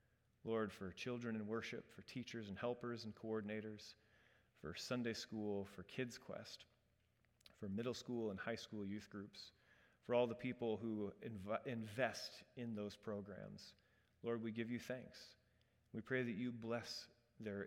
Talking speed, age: 155 wpm, 30-49